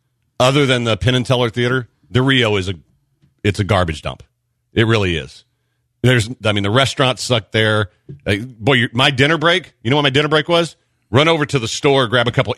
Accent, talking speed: American, 190 wpm